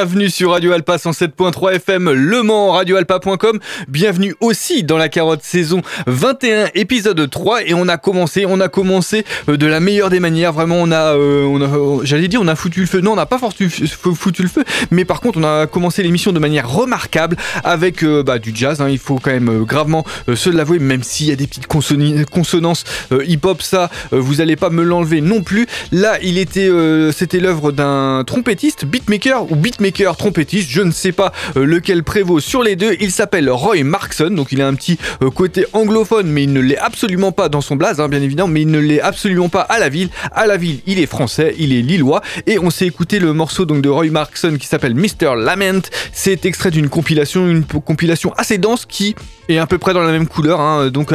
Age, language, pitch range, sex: 20-39, French, 150-195 Hz, male